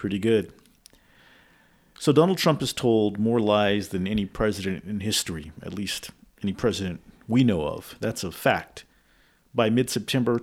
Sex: male